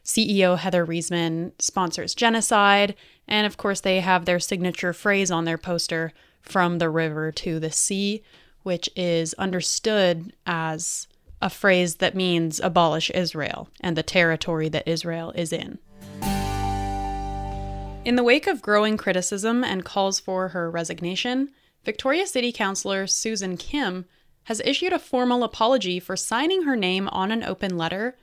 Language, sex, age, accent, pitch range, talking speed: English, female, 20-39, American, 170-215 Hz, 145 wpm